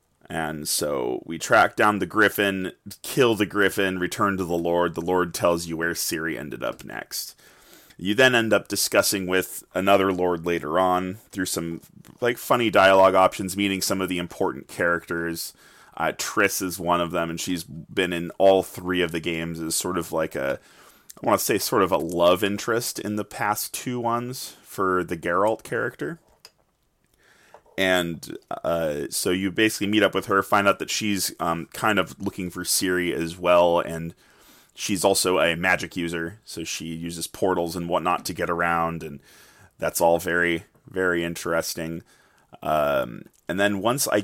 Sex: male